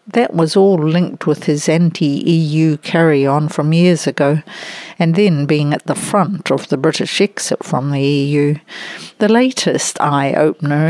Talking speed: 150 wpm